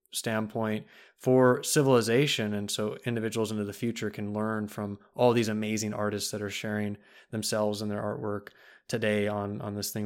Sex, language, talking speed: male, English, 165 wpm